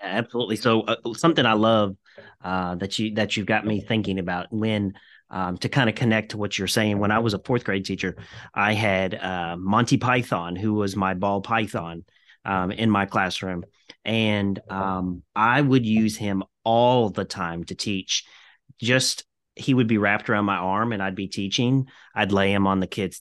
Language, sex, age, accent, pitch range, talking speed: English, male, 30-49, American, 95-115 Hz, 195 wpm